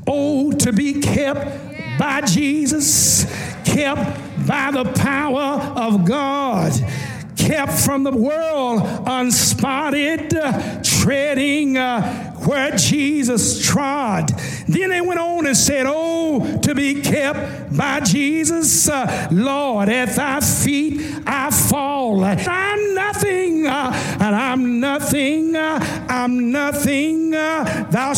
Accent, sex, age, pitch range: American, male, 60-79, 225-285 Hz